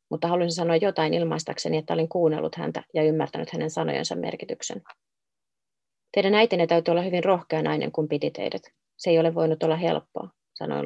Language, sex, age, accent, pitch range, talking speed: Finnish, female, 30-49, native, 160-180 Hz, 170 wpm